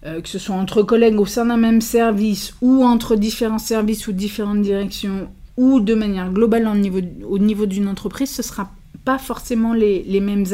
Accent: French